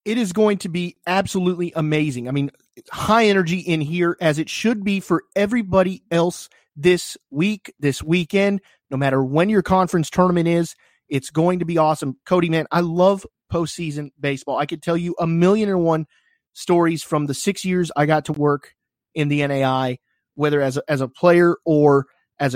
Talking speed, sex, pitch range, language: 185 wpm, male, 140-180 Hz, English